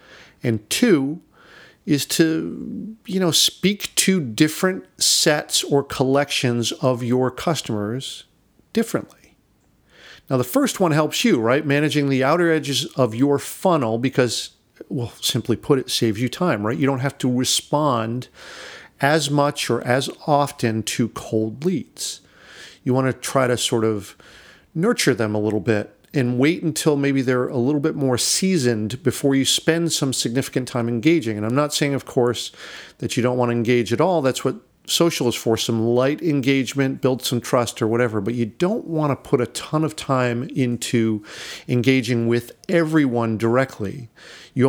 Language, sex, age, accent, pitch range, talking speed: English, male, 50-69, American, 120-150 Hz, 165 wpm